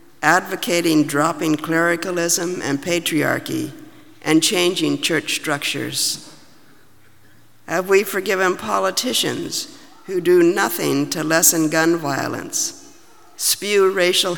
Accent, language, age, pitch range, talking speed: American, English, 50-69, 150-195 Hz, 90 wpm